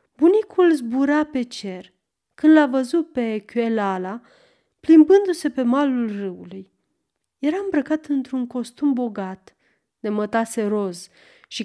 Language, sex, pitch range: Romanian, female, 200-290 Hz